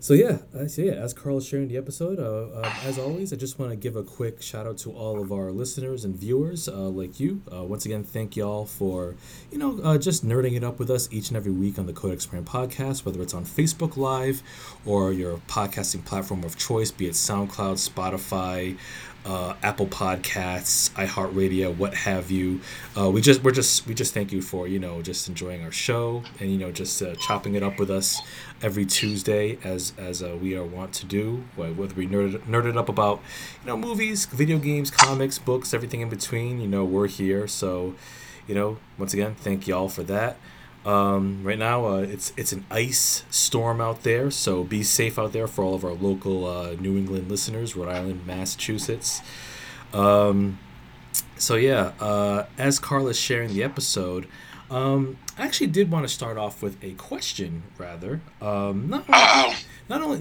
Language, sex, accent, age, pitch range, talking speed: English, male, American, 20-39, 95-130 Hz, 200 wpm